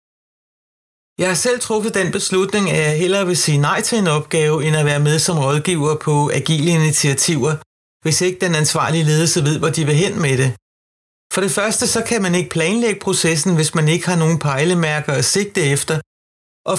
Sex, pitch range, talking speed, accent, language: male, 150-185 Hz, 205 wpm, native, Danish